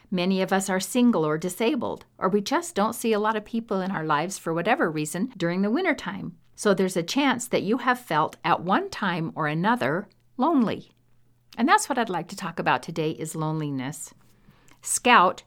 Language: English